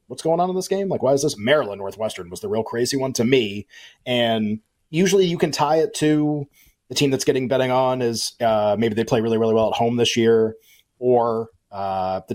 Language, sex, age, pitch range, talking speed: English, male, 30-49, 110-140 Hz, 230 wpm